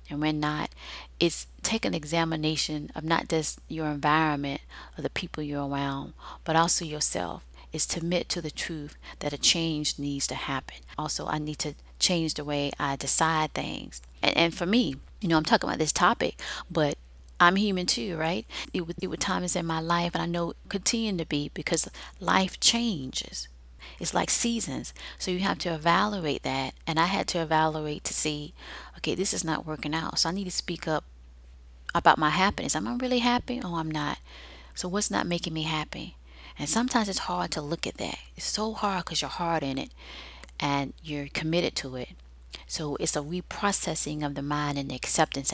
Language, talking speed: English, 200 wpm